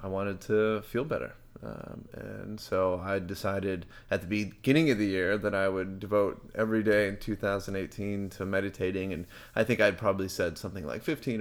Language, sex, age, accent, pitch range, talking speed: English, male, 20-39, American, 95-115 Hz, 185 wpm